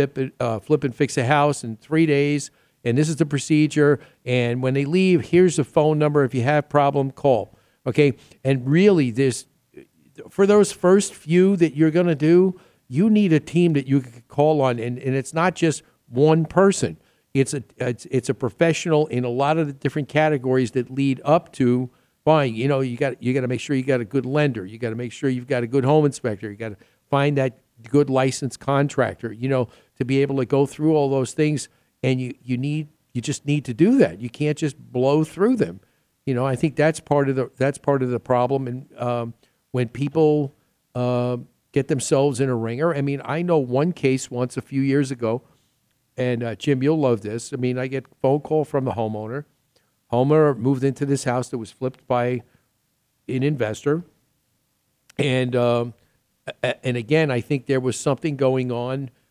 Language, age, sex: English, 50-69, male